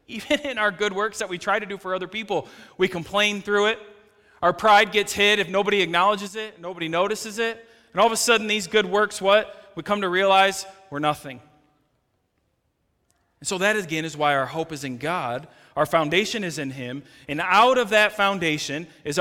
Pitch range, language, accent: 160-220 Hz, English, American